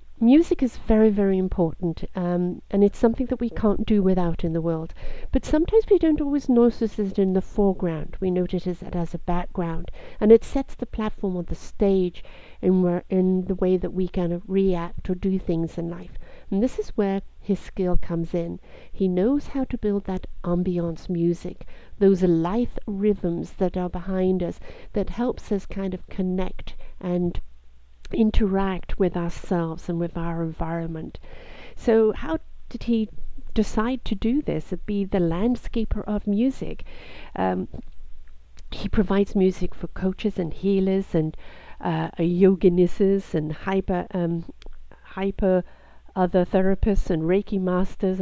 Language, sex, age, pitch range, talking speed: English, female, 60-79, 175-210 Hz, 160 wpm